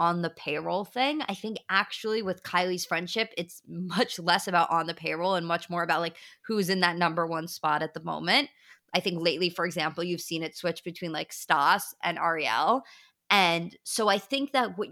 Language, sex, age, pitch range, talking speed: English, female, 20-39, 175-230 Hz, 205 wpm